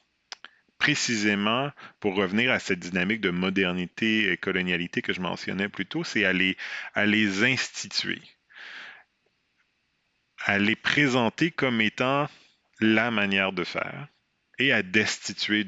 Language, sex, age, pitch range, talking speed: French, male, 40-59, 85-110 Hz, 125 wpm